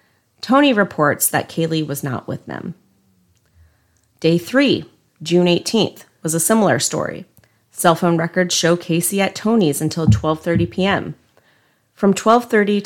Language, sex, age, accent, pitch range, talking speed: English, female, 30-49, American, 150-195 Hz, 130 wpm